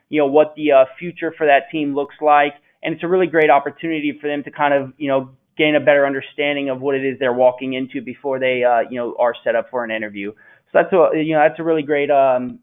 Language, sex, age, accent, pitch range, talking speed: English, male, 20-39, American, 130-150 Hz, 265 wpm